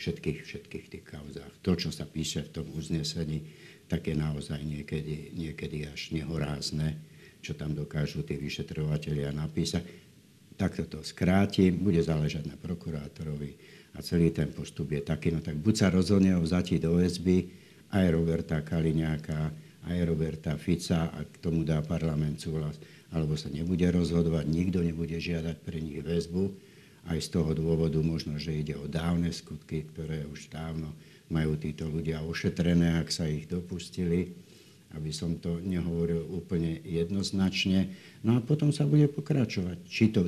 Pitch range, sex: 80-90 Hz, male